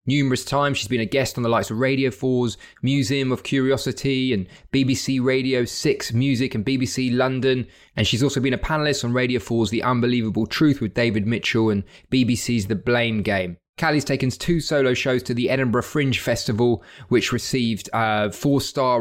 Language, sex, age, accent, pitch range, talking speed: English, male, 20-39, British, 115-135 Hz, 180 wpm